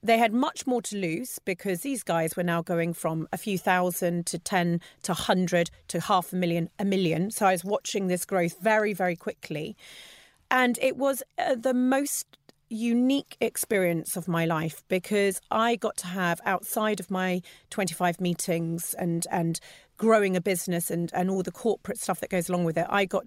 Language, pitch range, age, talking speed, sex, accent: English, 175-215 Hz, 30-49, 190 wpm, female, British